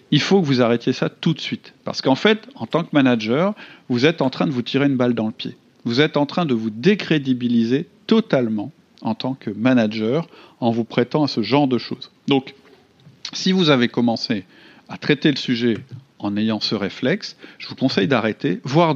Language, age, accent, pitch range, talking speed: French, 40-59, French, 115-155 Hz, 210 wpm